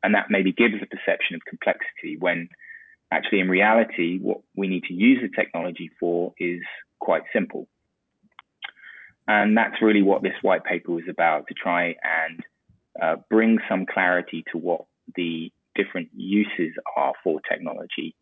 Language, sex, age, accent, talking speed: English, male, 20-39, British, 155 wpm